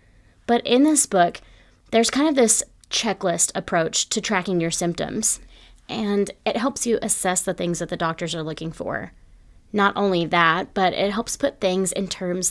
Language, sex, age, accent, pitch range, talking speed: English, female, 20-39, American, 170-200 Hz, 175 wpm